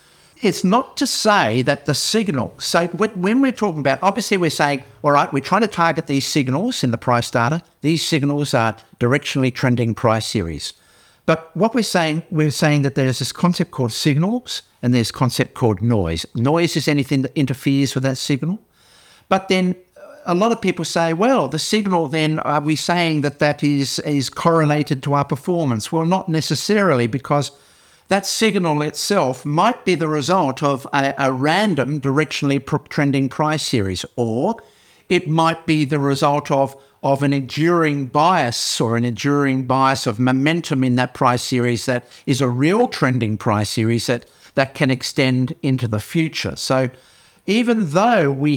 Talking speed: 175 wpm